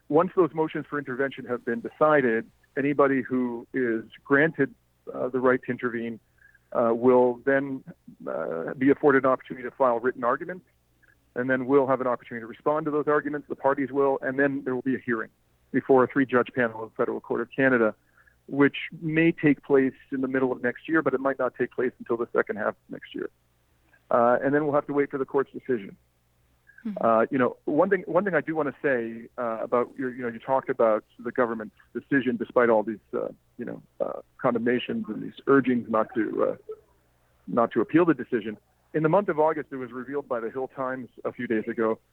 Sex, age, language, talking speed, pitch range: male, 40-59, English, 215 wpm, 115-140 Hz